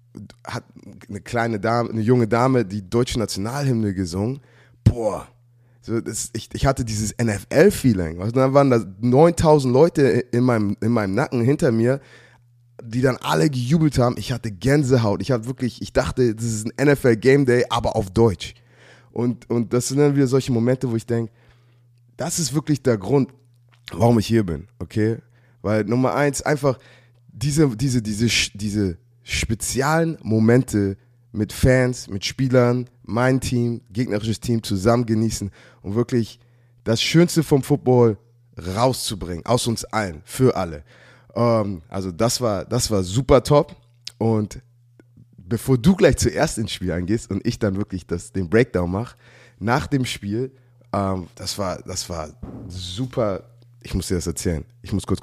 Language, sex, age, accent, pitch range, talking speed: German, male, 20-39, German, 105-125 Hz, 160 wpm